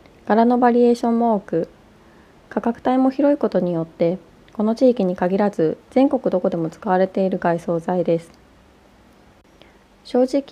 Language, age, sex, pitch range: Japanese, 20-39, female, 175-245 Hz